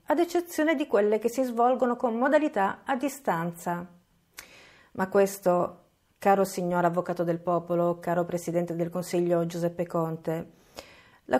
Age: 40-59